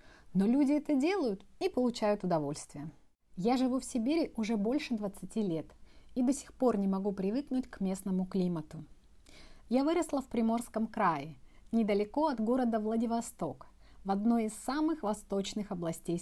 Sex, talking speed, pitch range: female, 150 wpm, 185-250 Hz